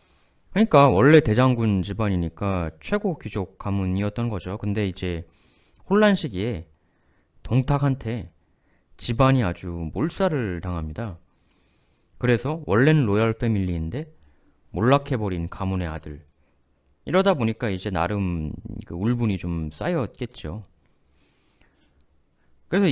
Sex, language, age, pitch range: male, Korean, 30-49, 80-125 Hz